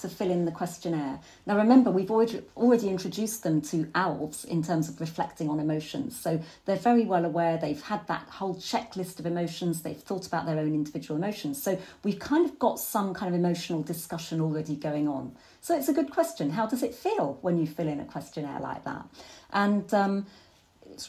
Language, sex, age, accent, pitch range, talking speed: English, female, 40-59, British, 170-250 Hz, 200 wpm